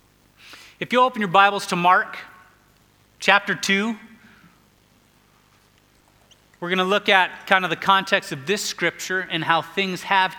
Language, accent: English, American